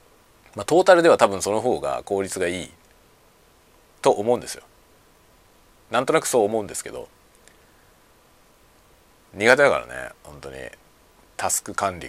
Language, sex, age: Japanese, male, 40-59